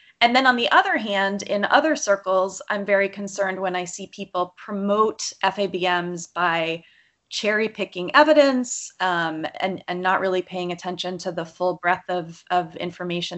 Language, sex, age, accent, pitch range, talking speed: English, female, 20-39, American, 175-210 Hz, 160 wpm